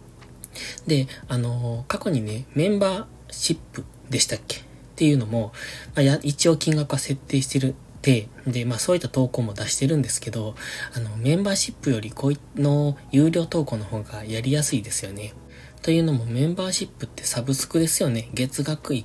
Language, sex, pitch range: Japanese, male, 115-150 Hz